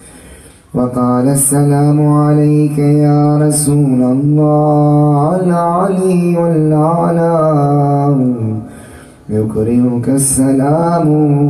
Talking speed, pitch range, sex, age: 50 wpm, 110-145 Hz, male, 30-49